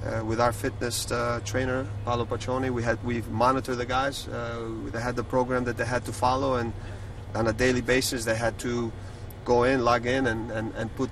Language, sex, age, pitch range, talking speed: English, male, 30-49, 115-125 Hz, 210 wpm